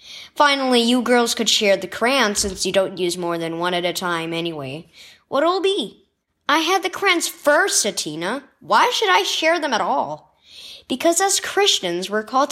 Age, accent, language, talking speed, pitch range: 20-39, American, English, 185 wpm, 180-305 Hz